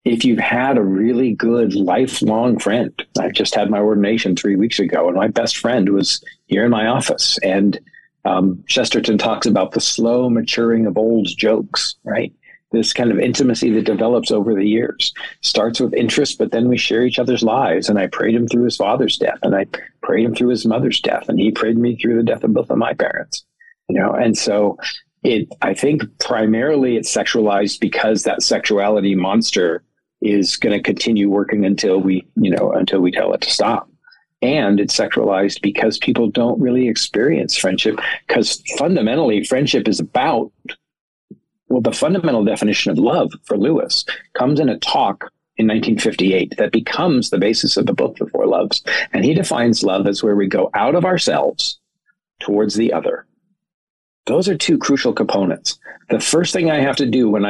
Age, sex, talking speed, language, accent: 50-69, male, 185 wpm, English, American